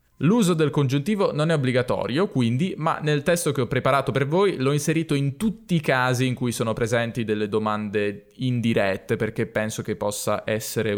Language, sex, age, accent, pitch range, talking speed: Italian, male, 20-39, native, 115-155 Hz, 180 wpm